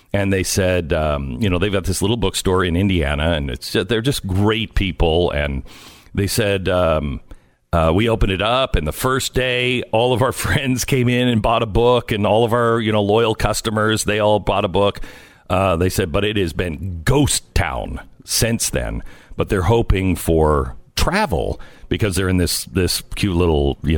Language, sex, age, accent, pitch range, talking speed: English, male, 50-69, American, 85-115 Hz, 200 wpm